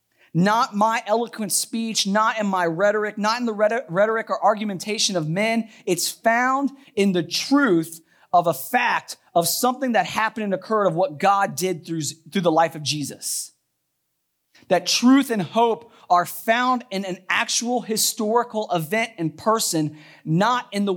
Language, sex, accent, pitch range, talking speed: English, male, American, 175-230 Hz, 155 wpm